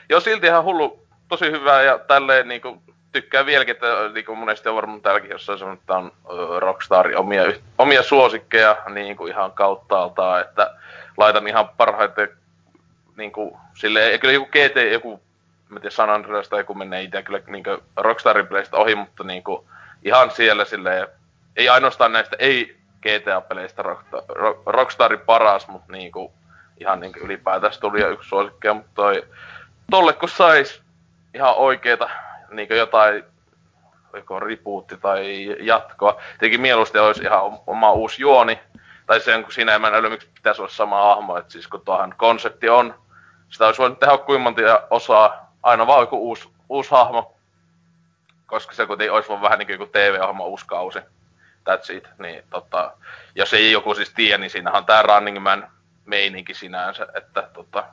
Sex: male